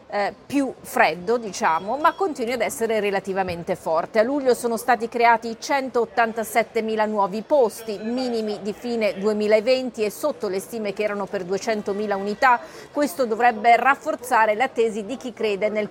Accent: native